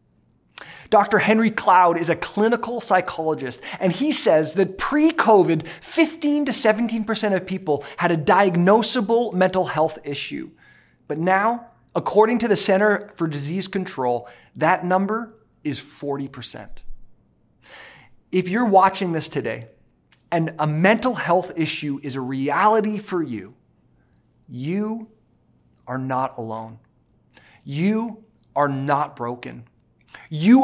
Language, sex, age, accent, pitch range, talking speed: English, male, 30-49, American, 135-210 Hz, 120 wpm